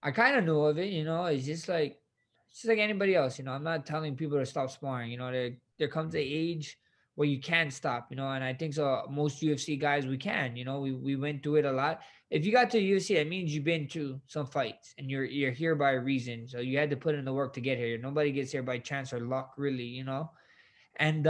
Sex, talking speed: male, 270 wpm